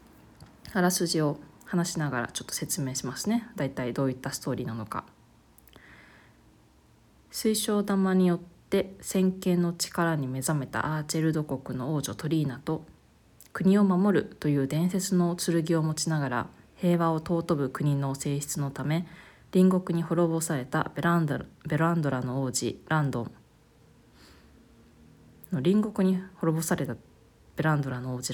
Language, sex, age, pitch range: Japanese, female, 20-39, 135-180 Hz